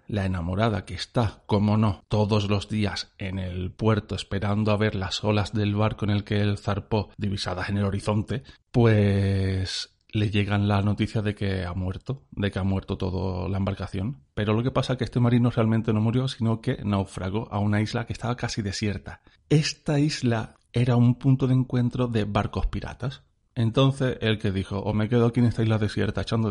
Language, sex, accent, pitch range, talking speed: Spanish, male, Spanish, 95-115 Hz, 200 wpm